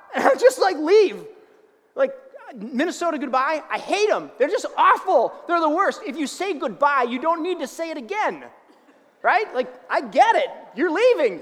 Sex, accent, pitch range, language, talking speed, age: male, American, 235-380 Hz, English, 185 wpm, 30-49